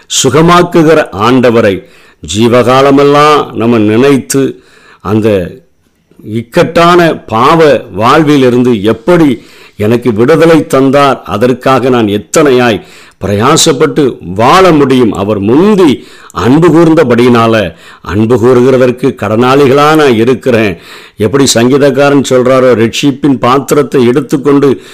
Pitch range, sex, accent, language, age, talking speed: 115-145 Hz, male, native, Tamil, 50-69, 80 wpm